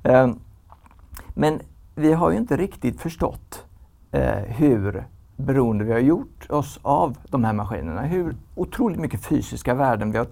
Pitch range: 95-140 Hz